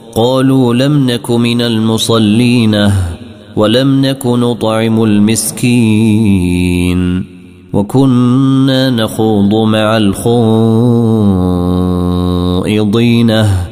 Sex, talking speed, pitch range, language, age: male, 55 wpm, 100-120 Hz, Arabic, 30-49